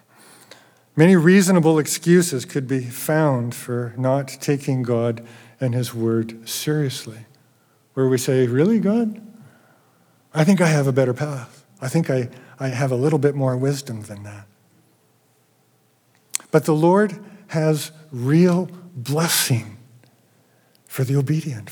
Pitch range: 130-165 Hz